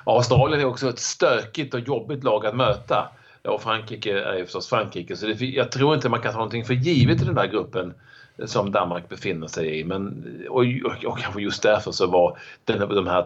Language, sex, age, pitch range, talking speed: Swedish, male, 40-59, 95-130 Hz, 215 wpm